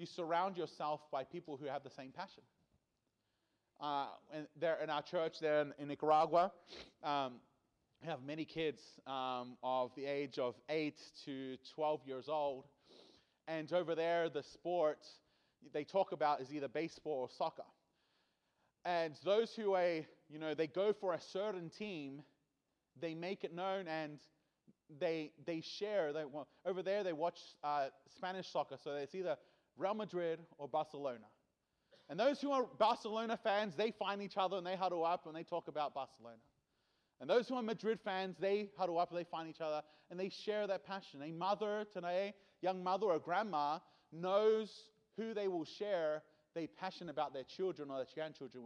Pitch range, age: 150-195 Hz, 30-49